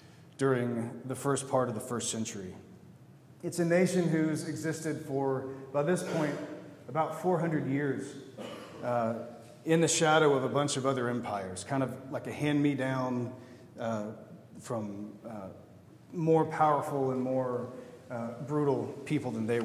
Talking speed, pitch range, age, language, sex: 145 wpm, 120-150 Hz, 40-59, English, male